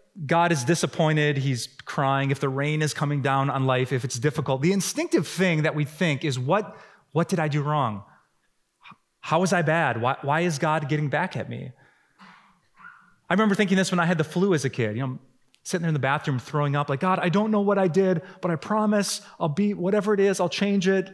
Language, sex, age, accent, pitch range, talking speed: English, male, 30-49, American, 140-190 Hz, 235 wpm